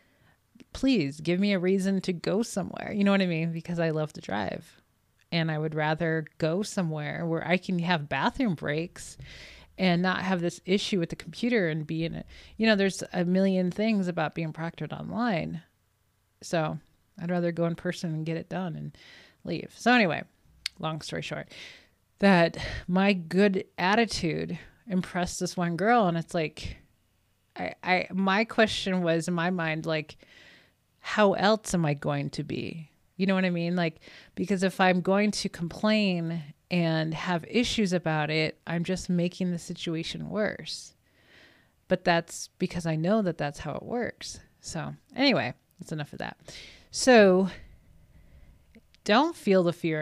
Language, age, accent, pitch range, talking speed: English, 30-49, American, 160-195 Hz, 170 wpm